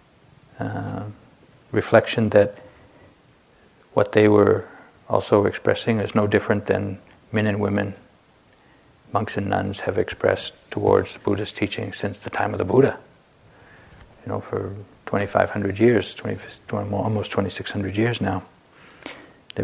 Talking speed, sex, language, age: 135 wpm, male, English, 50-69